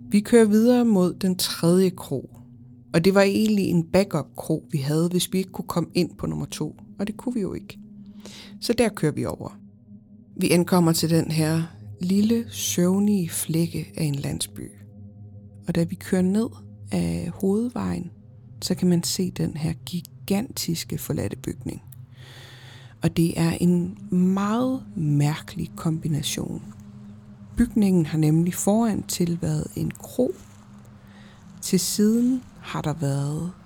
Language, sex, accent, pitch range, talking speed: Danish, female, native, 120-190 Hz, 150 wpm